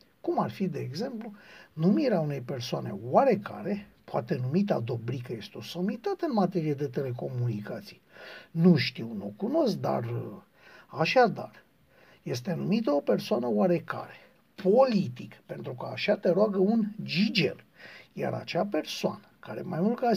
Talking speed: 135 wpm